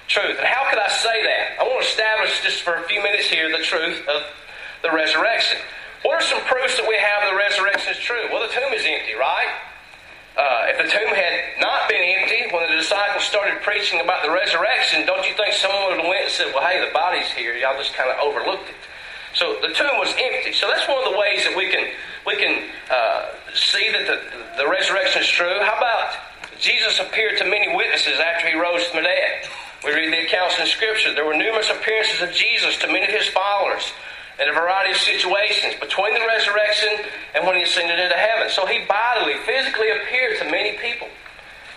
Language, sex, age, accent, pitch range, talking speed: English, male, 40-59, American, 180-220 Hz, 215 wpm